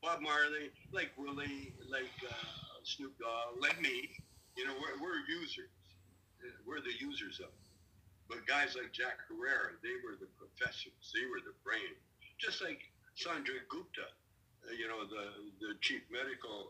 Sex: male